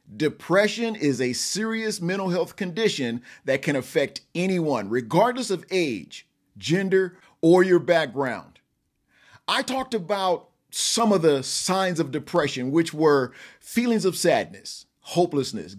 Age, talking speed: 40-59, 125 wpm